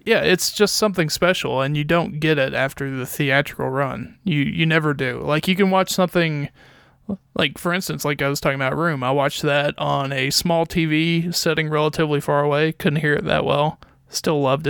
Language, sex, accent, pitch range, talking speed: English, male, American, 145-170 Hz, 205 wpm